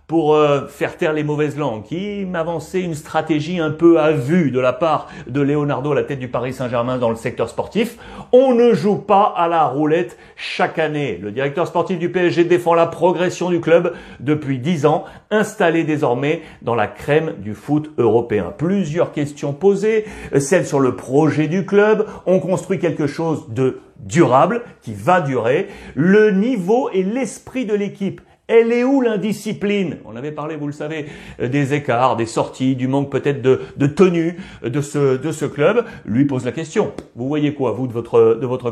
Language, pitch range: French, 140-185 Hz